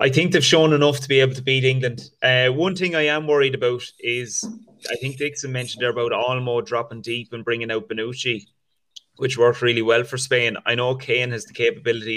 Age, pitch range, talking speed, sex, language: 20-39, 115-130 Hz, 215 wpm, male, English